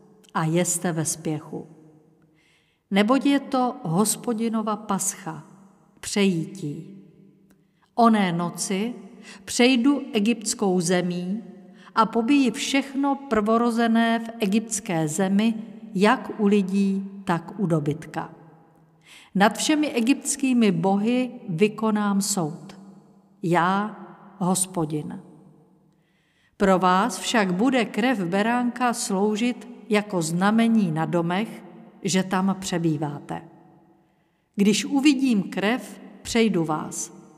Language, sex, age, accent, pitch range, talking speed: Czech, female, 50-69, native, 175-225 Hz, 90 wpm